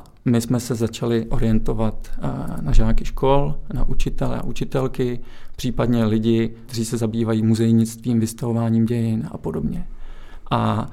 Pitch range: 115-140 Hz